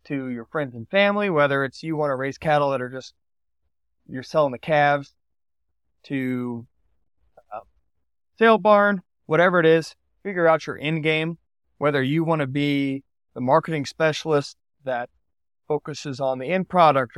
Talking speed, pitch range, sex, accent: 155 wpm, 120-160 Hz, male, American